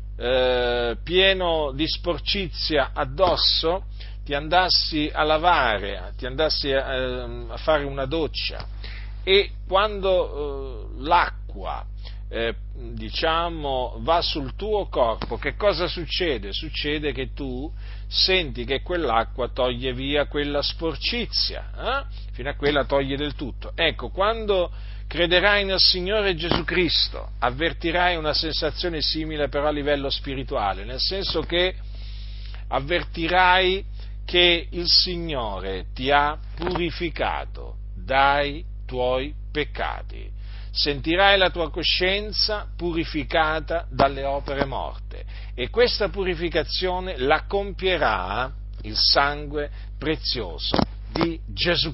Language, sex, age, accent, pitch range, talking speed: Italian, male, 50-69, native, 110-170 Hz, 100 wpm